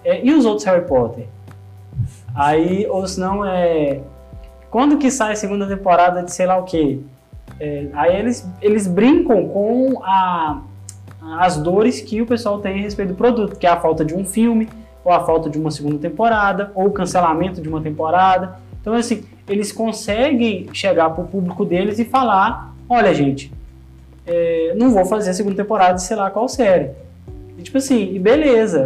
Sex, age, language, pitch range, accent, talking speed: male, 20-39, Portuguese, 155-215 Hz, Brazilian, 180 wpm